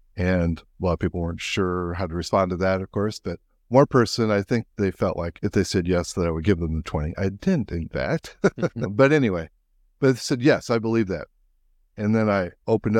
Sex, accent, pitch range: male, American, 85-110 Hz